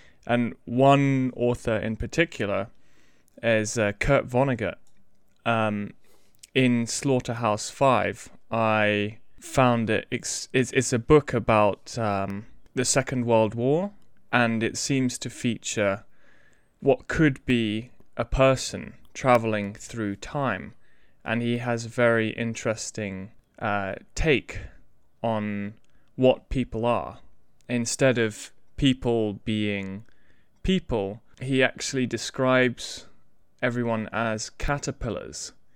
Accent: British